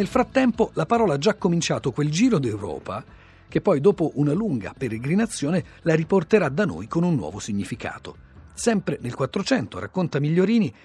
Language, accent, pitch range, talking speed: Italian, native, 125-200 Hz, 160 wpm